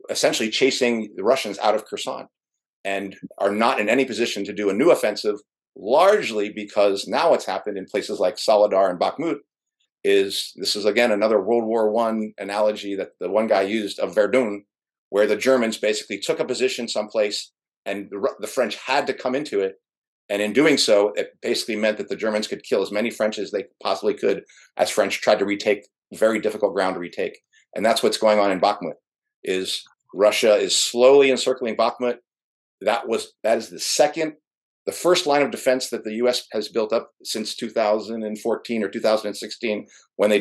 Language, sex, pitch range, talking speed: English, male, 105-140 Hz, 185 wpm